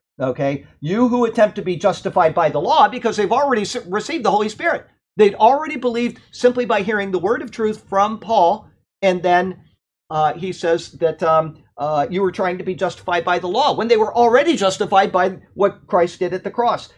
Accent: American